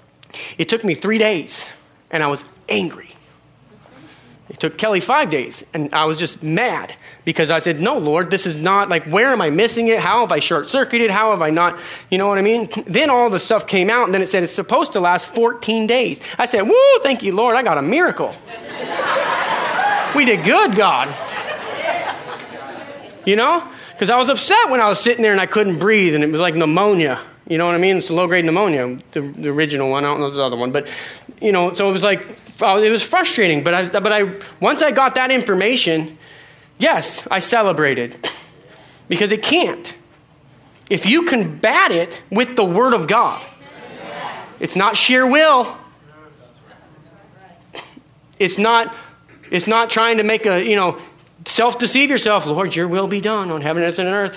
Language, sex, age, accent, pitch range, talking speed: English, male, 30-49, American, 165-225 Hz, 190 wpm